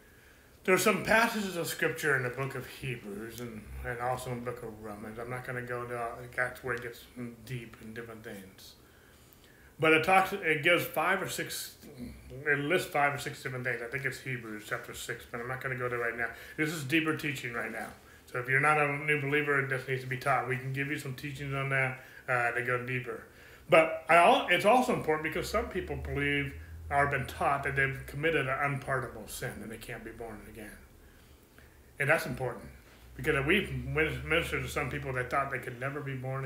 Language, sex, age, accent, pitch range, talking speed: English, male, 30-49, American, 125-150 Hz, 220 wpm